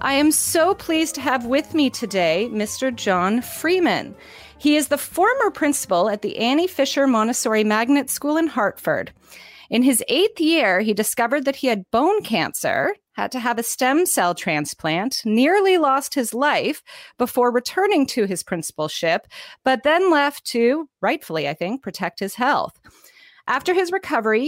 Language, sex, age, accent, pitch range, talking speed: English, female, 30-49, American, 210-295 Hz, 160 wpm